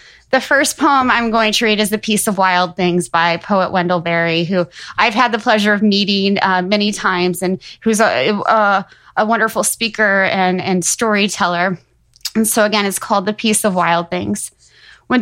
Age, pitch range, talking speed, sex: 20-39, 185-225 Hz, 185 wpm, female